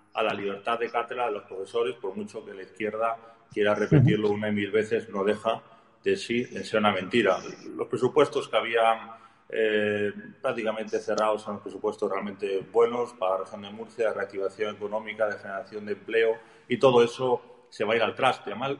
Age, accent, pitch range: 30-49, Spanish, 110-135 Hz